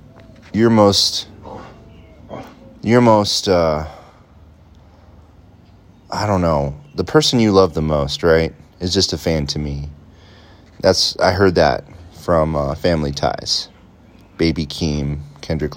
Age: 30-49